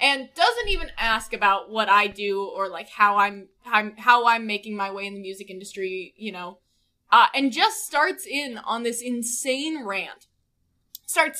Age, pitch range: 10-29, 220-315 Hz